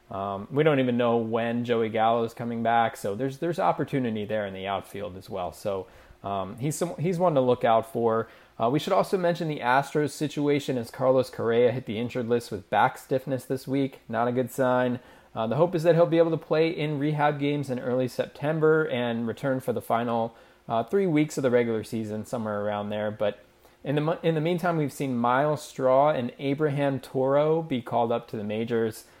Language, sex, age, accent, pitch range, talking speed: English, male, 20-39, American, 115-150 Hz, 215 wpm